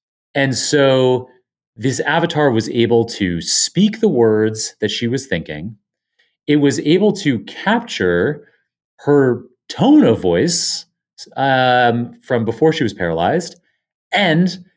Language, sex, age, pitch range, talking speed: English, male, 30-49, 115-165 Hz, 120 wpm